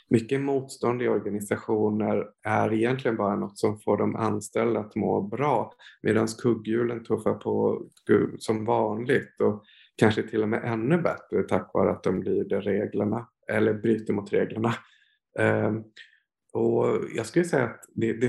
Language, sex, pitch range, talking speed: Swedish, male, 105-120 Hz, 145 wpm